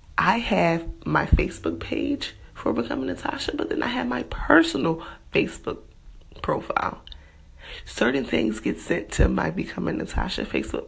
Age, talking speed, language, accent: 30-49, 140 wpm, English, American